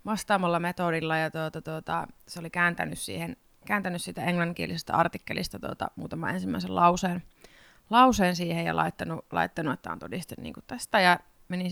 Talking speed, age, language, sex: 140 wpm, 20-39, Finnish, female